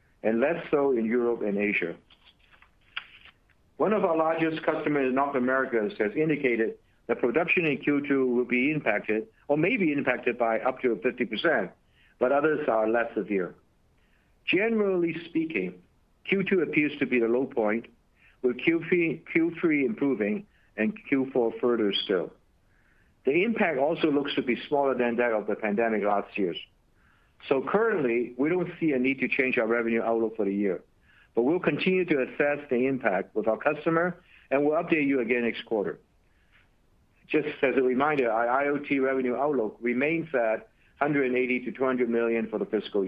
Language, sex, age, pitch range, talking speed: English, male, 60-79, 110-150 Hz, 165 wpm